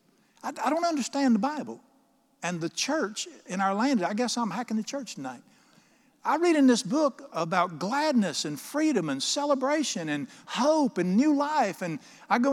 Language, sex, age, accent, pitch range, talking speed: English, male, 50-69, American, 165-250 Hz, 175 wpm